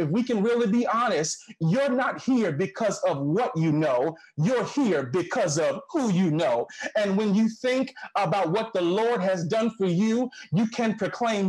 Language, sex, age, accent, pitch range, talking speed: English, male, 30-49, American, 185-230 Hz, 190 wpm